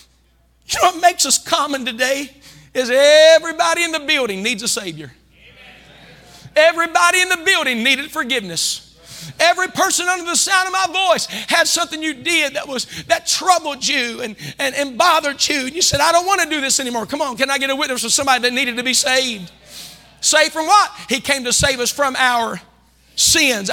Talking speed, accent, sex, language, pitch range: 195 wpm, American, male, English, 210-320 Hz